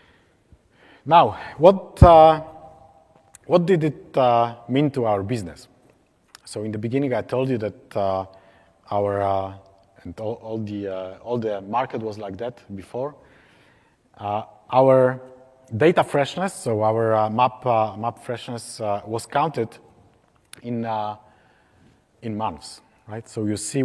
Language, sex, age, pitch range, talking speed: English, male, 30-49, 100-125 Hz, 140 wpm